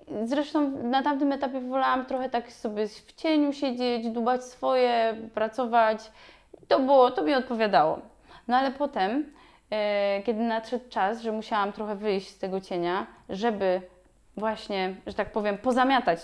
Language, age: Polish, 20-39